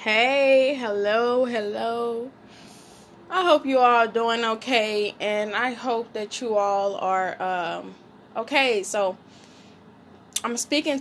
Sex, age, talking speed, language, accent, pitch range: female, 10-29, 120 wpm, English, American, 205-240 Hz